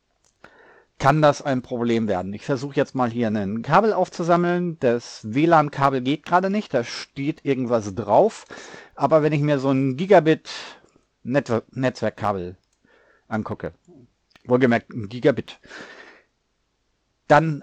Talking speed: 125 wpm